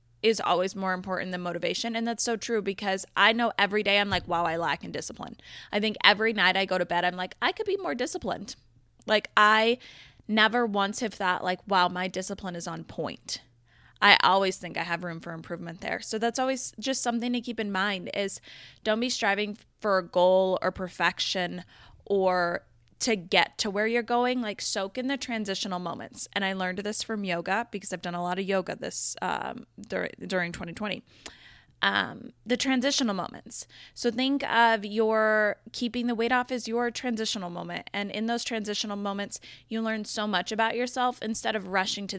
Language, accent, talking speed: English, American, 200 wpm